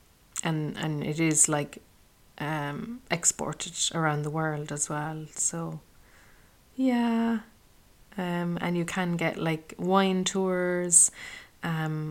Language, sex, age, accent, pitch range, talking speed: English, female, 20-39, Irish, 155-170 Hz, 115 wpm